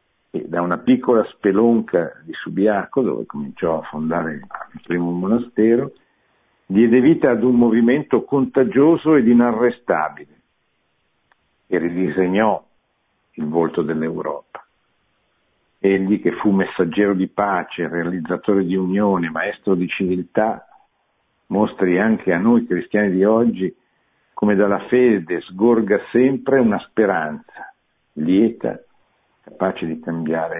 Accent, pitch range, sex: native, 90-120 Hz, male